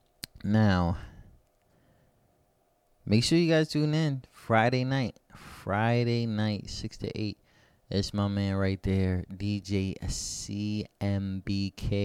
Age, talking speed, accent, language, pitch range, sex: 20-39, 105 wpm, American, English, 90-110 Hz, male